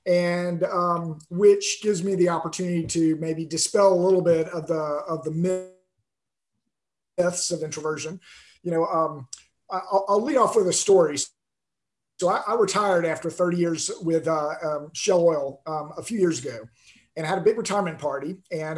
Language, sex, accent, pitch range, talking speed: English, male, American, 160-190 Hz, 170 wpm